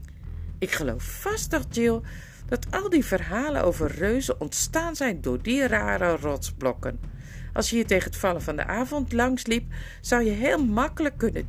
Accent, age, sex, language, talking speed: Dutch, 50-69, female, Dutch, 165 wpm